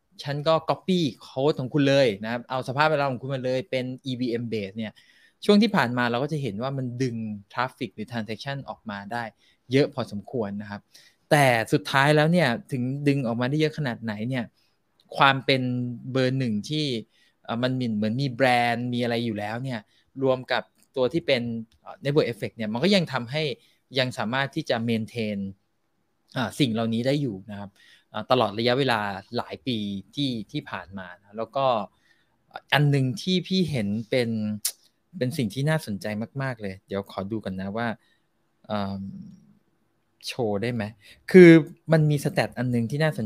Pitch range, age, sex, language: 110-145 Hz, 20-39, male, Thai